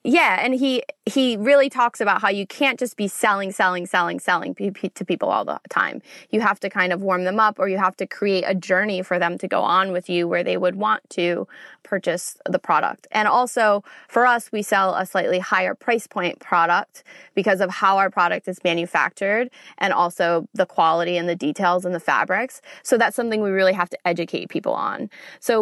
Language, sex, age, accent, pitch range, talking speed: English, female, 20-39, American, 180-220 Hz, 215 wpm